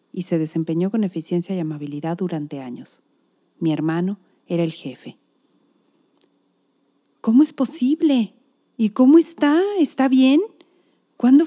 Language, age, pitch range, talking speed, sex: Spanish, 40-59, 170-250 Hz, 120 wpm, female